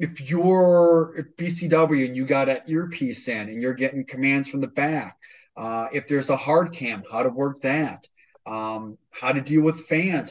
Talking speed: 190 wpm